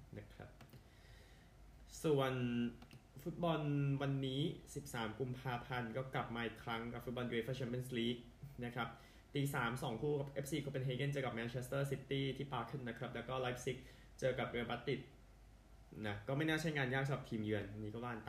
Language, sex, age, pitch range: Thai, male, 20-39, 110-130 Hz